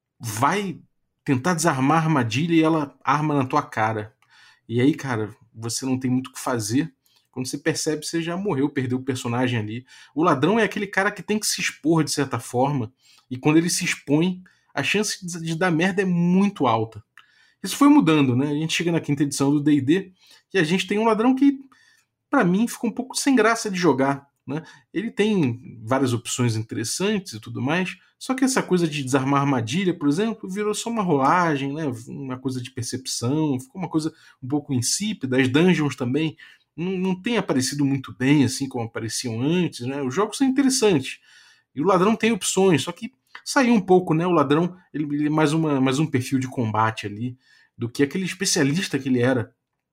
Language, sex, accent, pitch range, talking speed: Portuguese, male, Brazilian, 130-185 Hz, 200 wpm